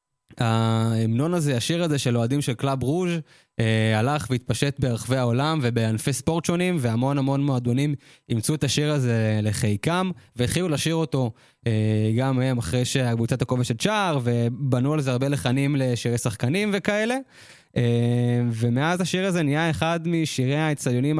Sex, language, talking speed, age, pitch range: male, Hebrew, 145 wpm, 20-39, 120-155 Hz